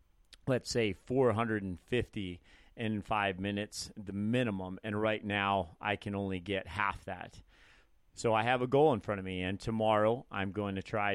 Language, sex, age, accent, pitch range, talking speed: English, male, 30-49, American, 95-115 Hz, 170 wpm